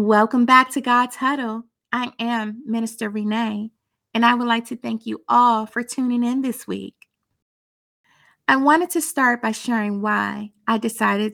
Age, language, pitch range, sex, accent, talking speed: 30-49, English, 215-250 Hz, female, American, 165 wpm